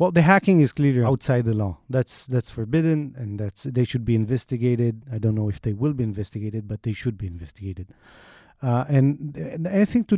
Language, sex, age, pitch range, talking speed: English, male, 30-49, 120-155 Hz, 205 wpm